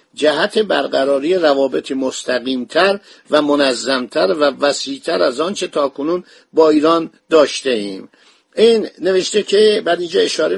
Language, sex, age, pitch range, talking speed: Persian, male, 50-69, 140-175 Hz, 120 wpm